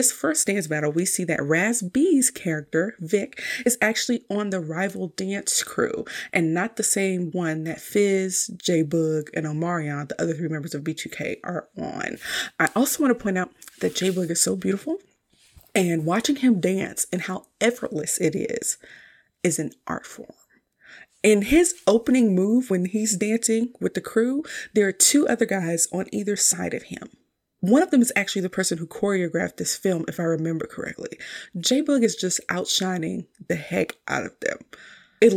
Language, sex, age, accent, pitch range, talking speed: English, female, 30-49, American, 170-230 Hz, 180 wpm